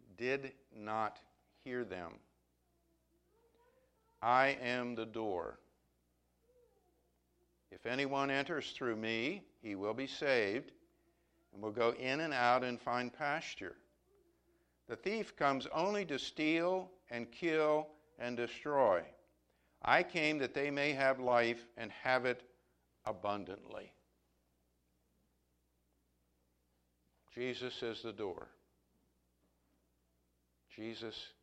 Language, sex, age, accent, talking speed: English, male, 60-79, American, 100 wpm